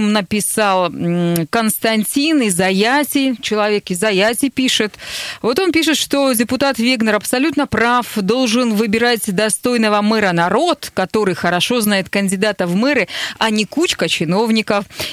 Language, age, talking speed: Russian, 30-49, 125 wpm